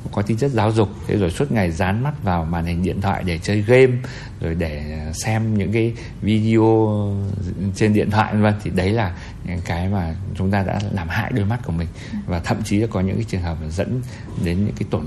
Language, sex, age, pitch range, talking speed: Vietnamese, male, 60-79, 90-110 Hz, 230 wpm